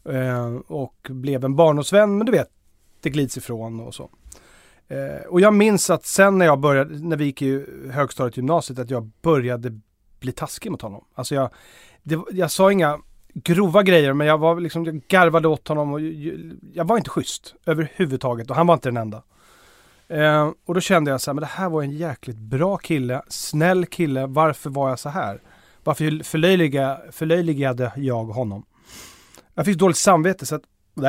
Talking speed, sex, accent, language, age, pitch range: 180 wpm, male, native, Swedish, 30-49, 125-165 Hz